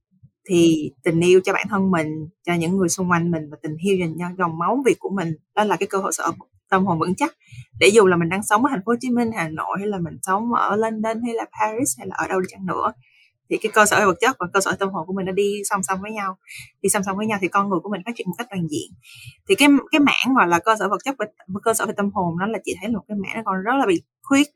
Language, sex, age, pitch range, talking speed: Vietnamese, female, 20-39, 170-225 Hz, 310 wpm